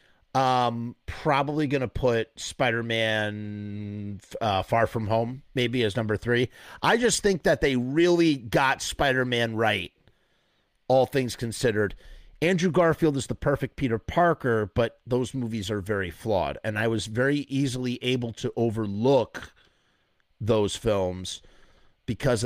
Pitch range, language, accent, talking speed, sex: 110-140 Hz, English, American, 135 wpm, male